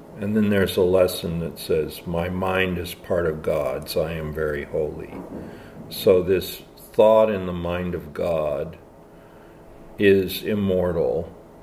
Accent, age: American, 50-69